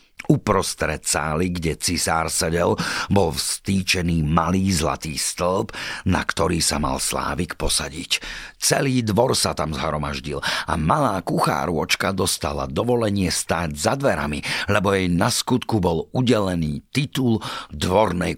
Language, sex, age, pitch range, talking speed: Slovak, male, 50-69, 80-105 Hz, 120 wpm